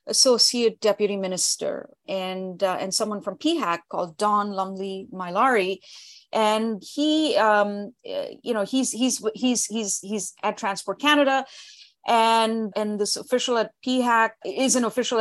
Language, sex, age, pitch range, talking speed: English, female, 30-49, 200-250 Hz, 140 wpm